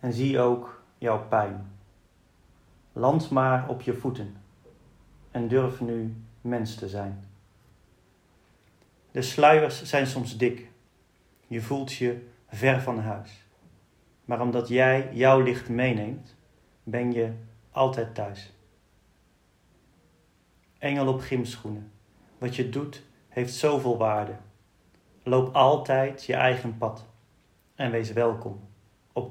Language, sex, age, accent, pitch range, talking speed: Dutch, male, 40-59, Dutch, 105-130 Hz, 115 wpm